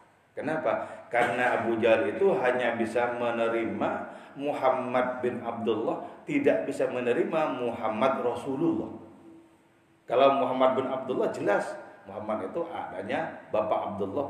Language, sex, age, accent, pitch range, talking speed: English, male, 40-59, Indonesian, 120-175 Hz, 110 wpm